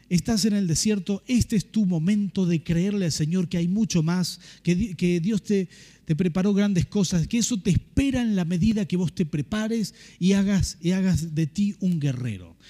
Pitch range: 155-205 Hz